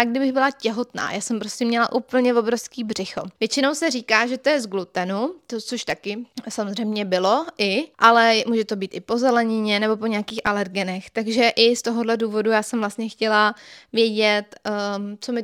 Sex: female